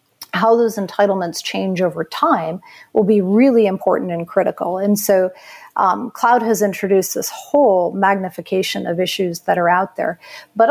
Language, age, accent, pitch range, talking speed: English, 50-69, American, 185-220 Hz, 155 wpm